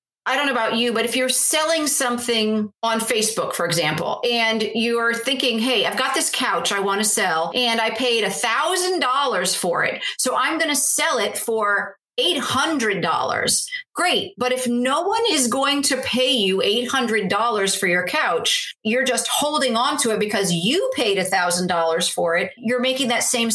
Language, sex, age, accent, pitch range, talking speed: English, female, 40-59, American, 200-260 Hz, 180 wpm